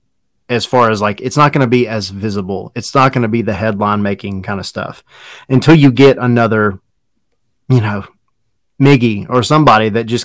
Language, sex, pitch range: English, male, 105-125 Hz